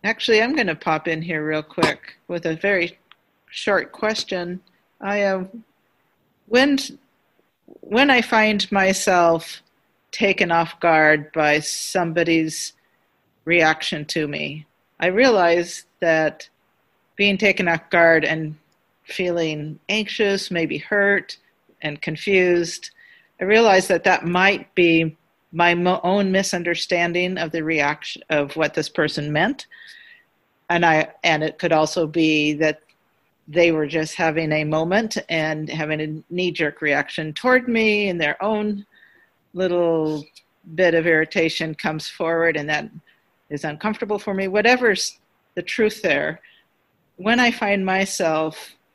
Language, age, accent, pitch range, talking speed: English, 40-59, American, 155-200 Hz, 130 wpm